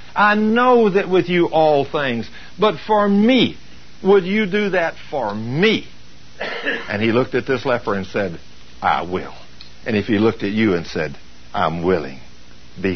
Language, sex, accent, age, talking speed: English, male, American, 60-79, 170 wpm